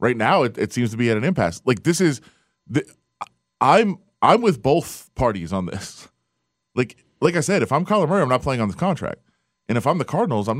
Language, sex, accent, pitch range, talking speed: English, male, American, 100-125 Hz, 230 wpm